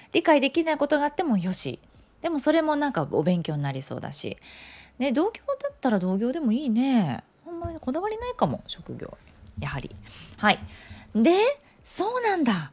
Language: Japanese